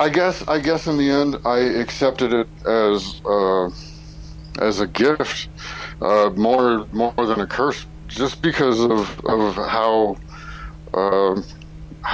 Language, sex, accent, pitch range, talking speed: English, male, American, 80-105 Hz, 135 wpm